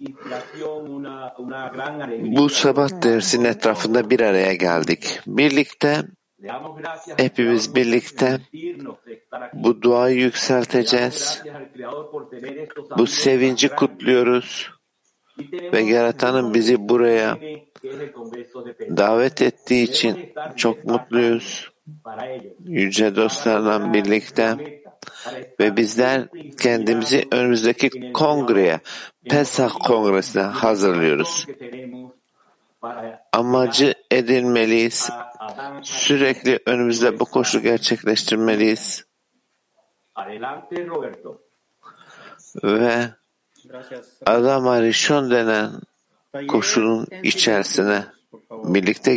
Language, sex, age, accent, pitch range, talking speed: Turkish, male, 60-79, native, 115-140 Hz, 60 wpm